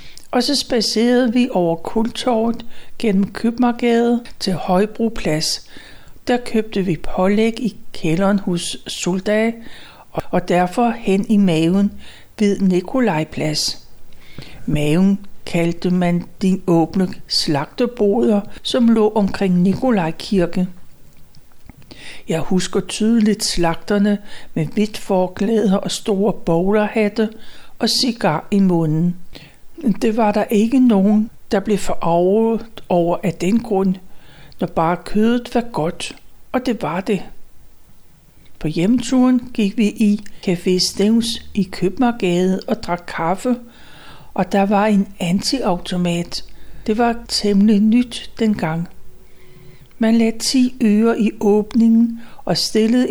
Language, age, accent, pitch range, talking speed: Danish, 60-79, native, 180-230 Hz, 115 wpm